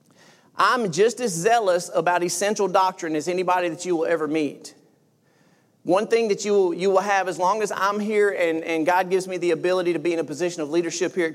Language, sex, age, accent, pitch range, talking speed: English, male, 40-59, American, 170-210 Hz, 220 wpm